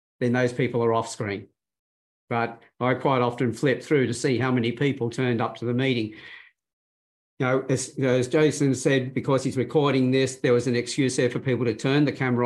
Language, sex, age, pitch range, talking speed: English, male, 50-69, 125-150 Hz, 210 wpm